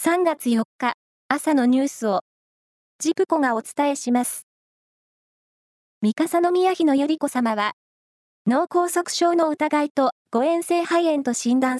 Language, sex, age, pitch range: Japanese, female, 20-39, 245-320 Hz